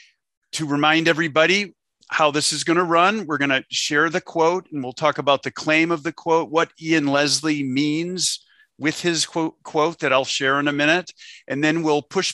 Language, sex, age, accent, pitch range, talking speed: English, male, 50-69, American, 135-170 Hz, 205 wpm